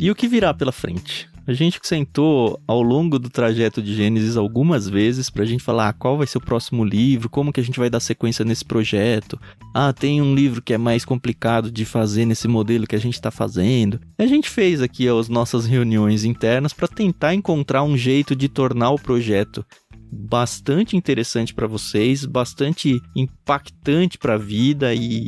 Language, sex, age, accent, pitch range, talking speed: Portuguese, male, 20-39, Brazilian, 115-145 Hz, 195 wpm